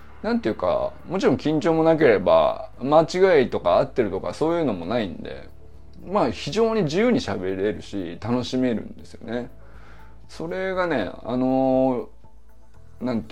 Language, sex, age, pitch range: Japanese, male, 20-39, 95-150 Hz